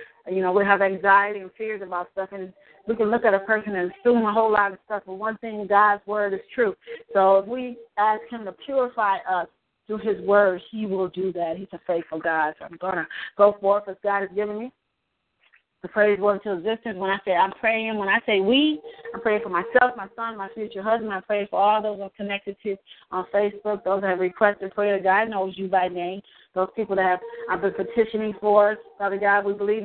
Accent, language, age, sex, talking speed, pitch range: American, English, 30-49, female, 235 wpm, 190-215 Hz